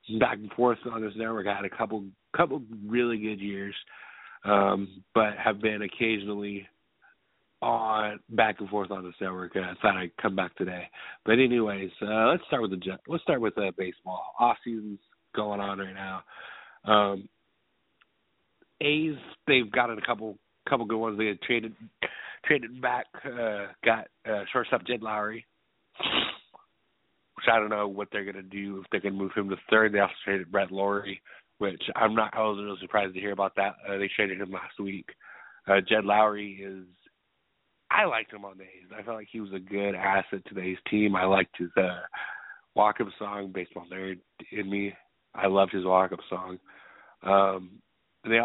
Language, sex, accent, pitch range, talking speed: English, male, American, 95-110 Hz, 185 wpm